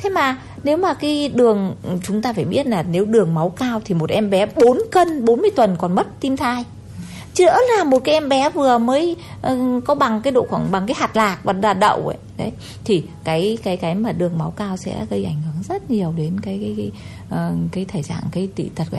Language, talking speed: Vietnamese, 245 wpm